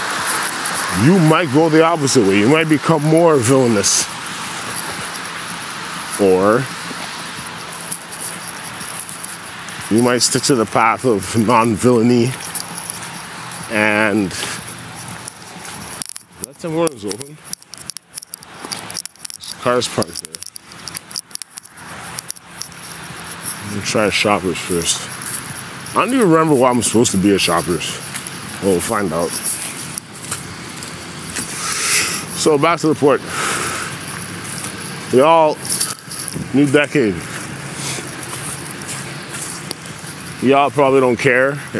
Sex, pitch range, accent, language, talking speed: male, 110-155 Hz, American, English, 85 wpm